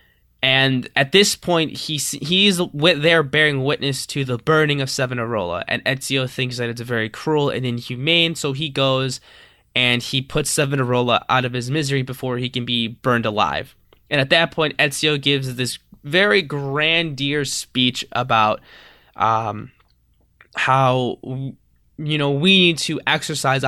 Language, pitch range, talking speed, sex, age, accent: English, 125-155 Hz, 150 wpm, male, 20-39, American